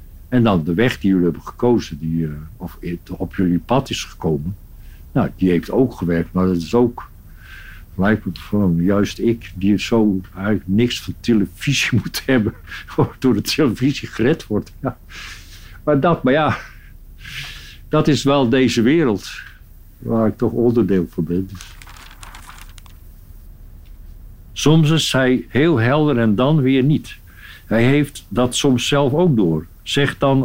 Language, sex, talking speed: Dutch, male, 150 wpm